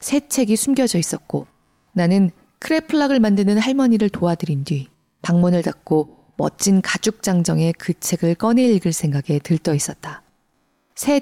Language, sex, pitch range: Korean, female, 165-230 Hz